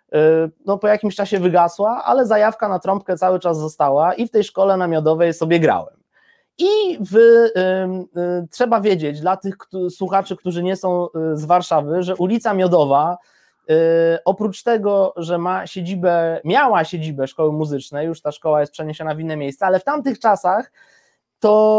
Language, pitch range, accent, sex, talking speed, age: Polish, 160-215 Hz, native, male, 170 wpm, 20-39